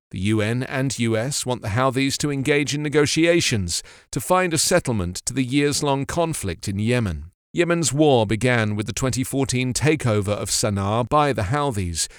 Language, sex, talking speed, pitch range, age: English, male, 160 wpm, 110-150 Hz, 50-69